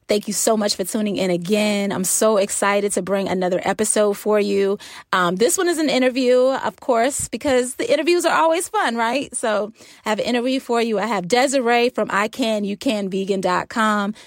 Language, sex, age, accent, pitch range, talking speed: English, female, 20-39, American, 190-235 Hz, 185 wpm